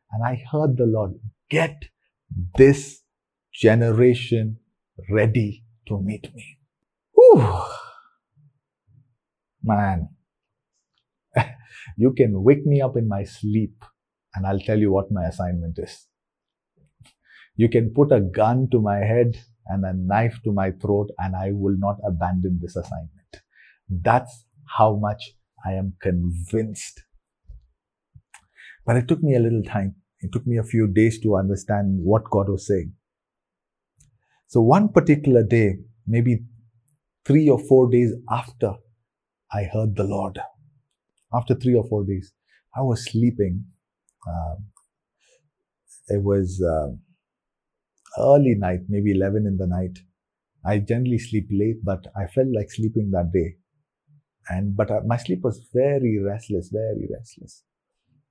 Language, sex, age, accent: English, male, 40-59, Indian